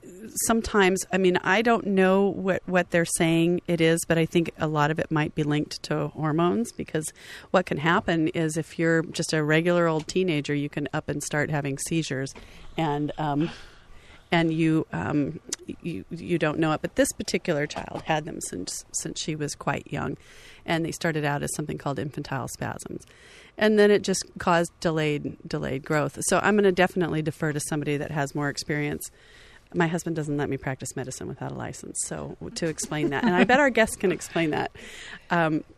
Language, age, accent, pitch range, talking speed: English, 40-59, American, 155-185 Hz, 195 wpm